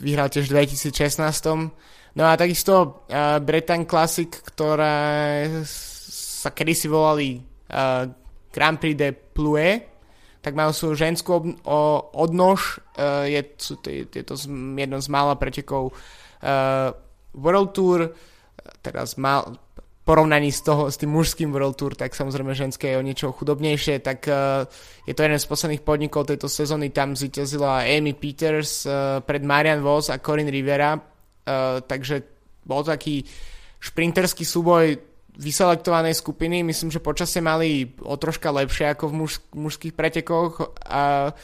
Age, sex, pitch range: 20-39, male, 140-160 Hz